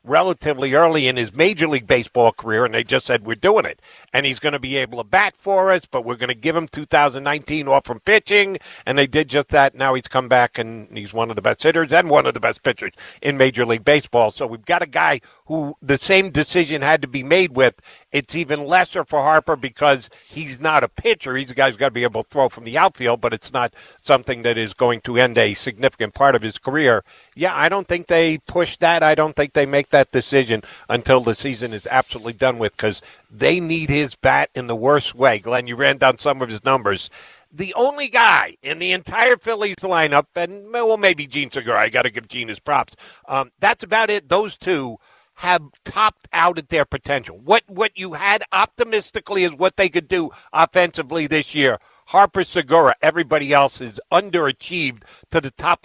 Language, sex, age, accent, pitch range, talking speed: English, male, 50-69, American, 130-175 Hz, 220 wpm